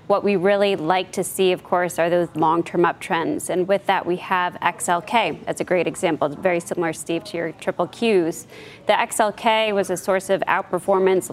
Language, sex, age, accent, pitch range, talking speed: English, female, 20-39, American, 170-195 Hz, 195 wpm